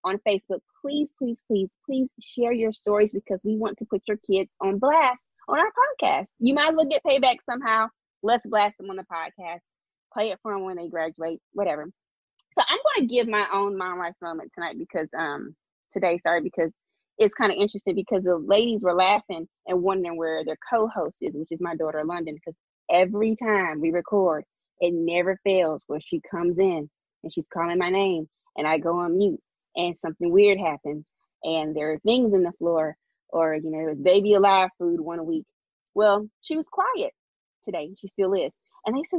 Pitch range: 170-235 Hz